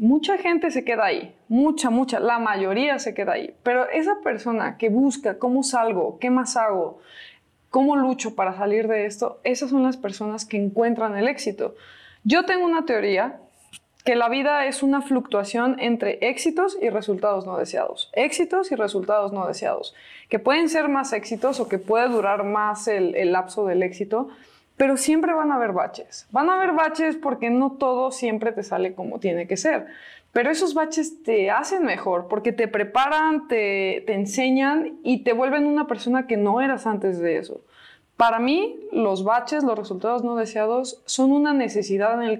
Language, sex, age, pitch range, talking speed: Spanish, female, 20-39, 210-275 Hz, 180 wpm